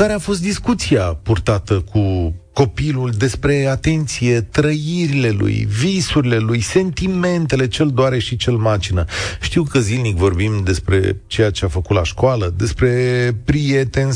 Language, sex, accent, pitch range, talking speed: Romanian, male, native, 105-135 Hz, 135 wpm